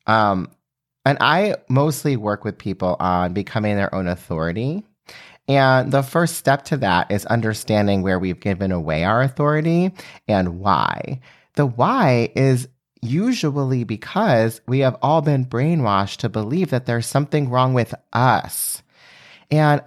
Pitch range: 105-145 Hz